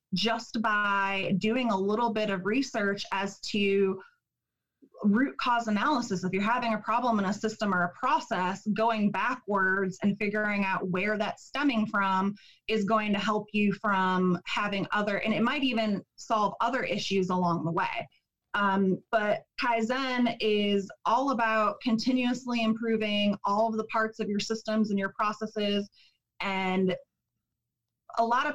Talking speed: 155 wpm